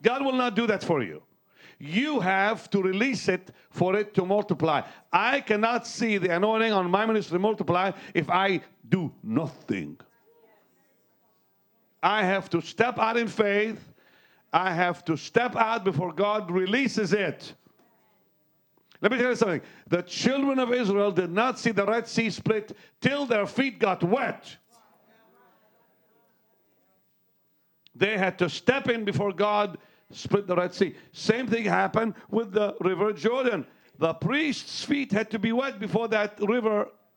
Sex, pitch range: male, 180-230 Hz